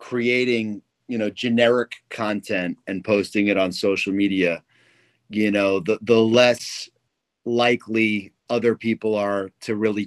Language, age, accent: English, 30-49, American